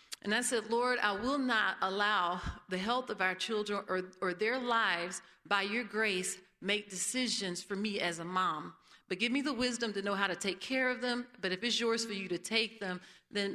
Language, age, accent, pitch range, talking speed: English, 40-59, American, 185-215 Hz, 220 wpm